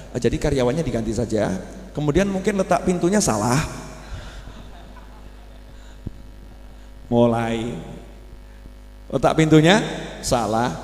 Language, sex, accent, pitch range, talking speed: Indonesian, male, native, 130-195 Hz, 70 wpm